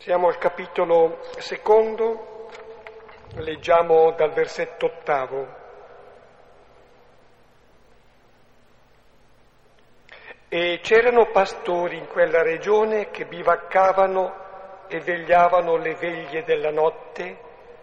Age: 50-69